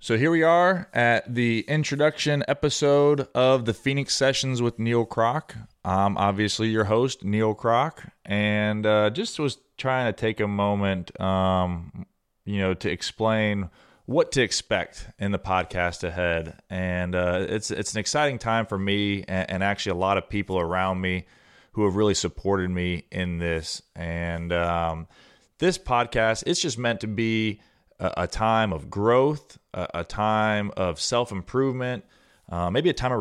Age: 30-49